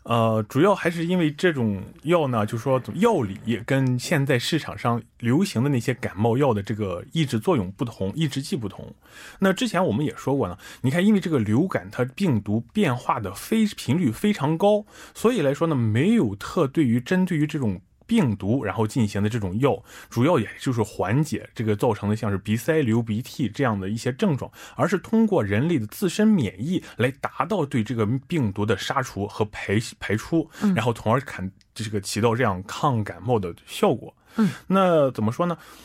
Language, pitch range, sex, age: Korean, 110-160 Hz, male, 20-39